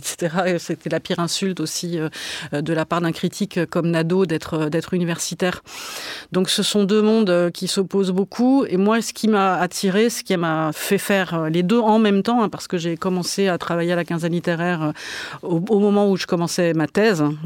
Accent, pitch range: French, 165-200 Hz